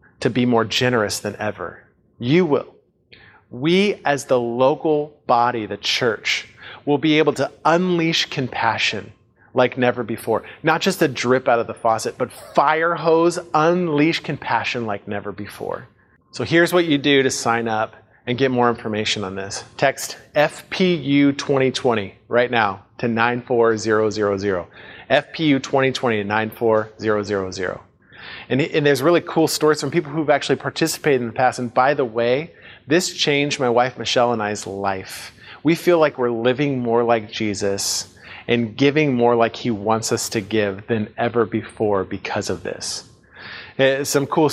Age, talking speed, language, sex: 30-49, 150 wpm, English, male